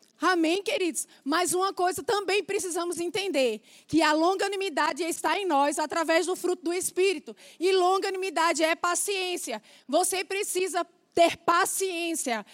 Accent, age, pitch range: Brazilian, 20-39, 325-390 Hz